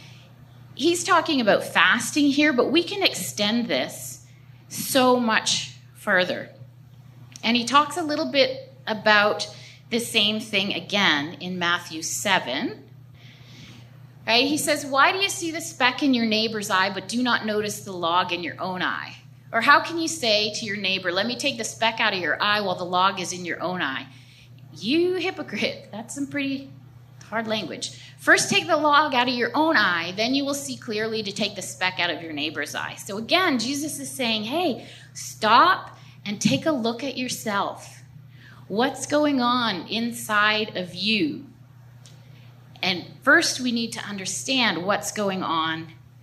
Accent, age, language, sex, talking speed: American, 30-49, English, female, 175 wpm